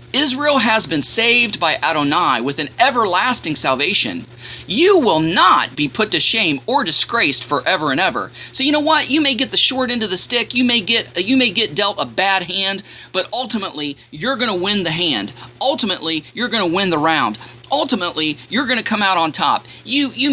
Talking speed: 205 wpm